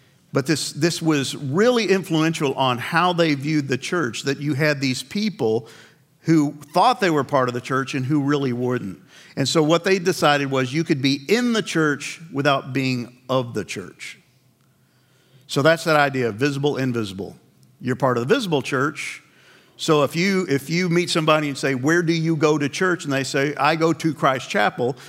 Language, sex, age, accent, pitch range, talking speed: English, male, 50-69, American, 130-165 Hz, 195 wpm